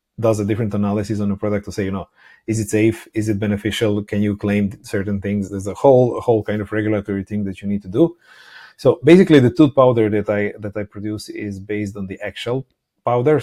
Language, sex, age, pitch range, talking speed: English, male, 30-49, 100-110 Hz, 230 wpm